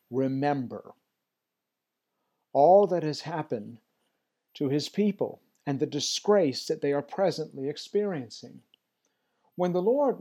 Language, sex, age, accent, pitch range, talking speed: English, male, 50-69, American, 135-165 Hz, 110 wpm